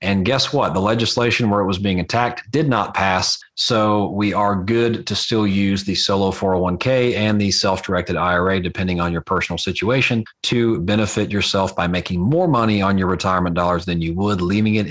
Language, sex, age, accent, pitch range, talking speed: English, male, 40-59, American, 95-125 Hz, 195 wpm